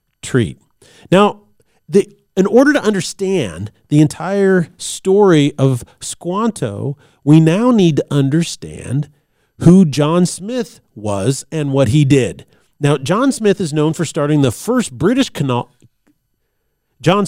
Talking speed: 125 wpm